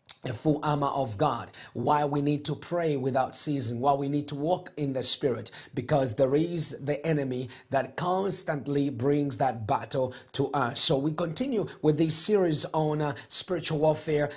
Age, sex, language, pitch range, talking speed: 30-49, male, English, 140-165 Hz, 175 wpm